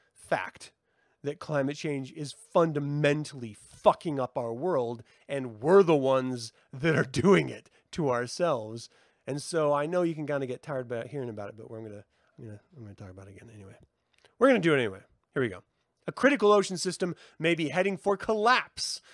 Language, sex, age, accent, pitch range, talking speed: English, male, 30-49, American, 120-180 Hz, 190 wpm